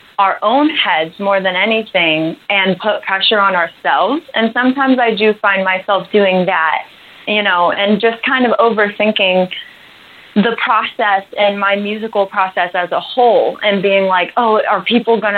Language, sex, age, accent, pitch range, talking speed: English, female, 20-39, American, 190-225 Hz, 165 wpm